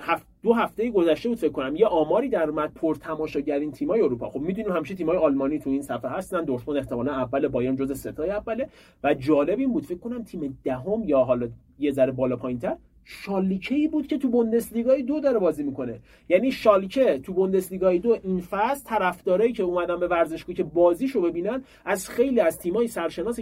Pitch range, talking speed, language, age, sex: 150-235 Hz, 195 wpm, Persian, 40-59, male